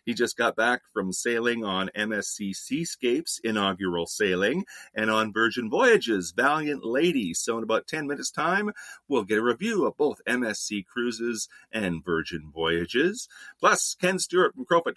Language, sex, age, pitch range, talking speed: English, male, 40-59, 90-130 Hz, 155 wpm